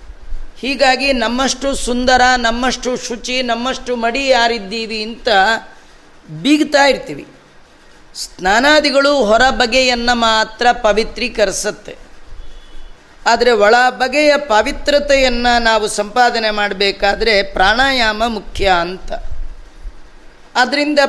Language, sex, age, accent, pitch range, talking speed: Kannada, female, 30-49, native, 210-260 Hz, 70 wpm